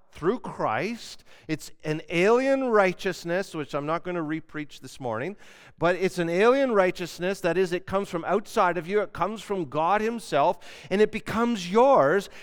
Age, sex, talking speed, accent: 50-69, male, 175 wpm, American